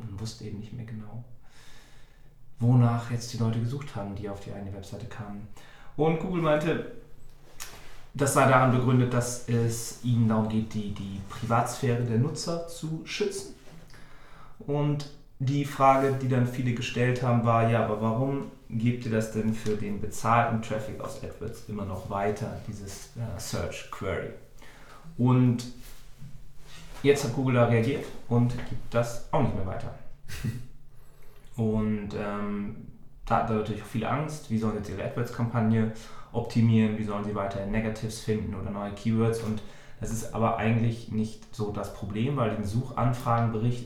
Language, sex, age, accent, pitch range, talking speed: German, male, 40-59, German, 110-130 Hz, 155 wpm